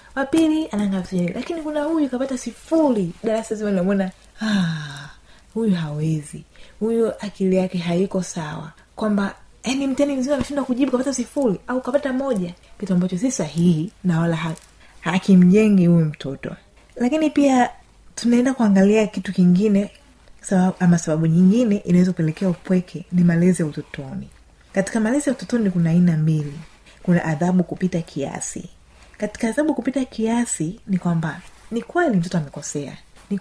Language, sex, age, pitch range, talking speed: Swahili, female, 30-49, 175-220 Hz, 140 wpm